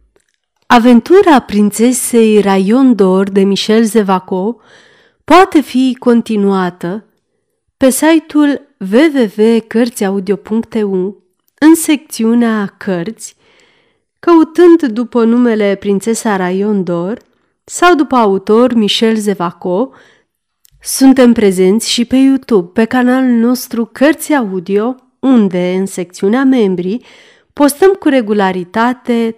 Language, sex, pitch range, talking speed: Romanian, female, 200-270 Hz, 85 wpm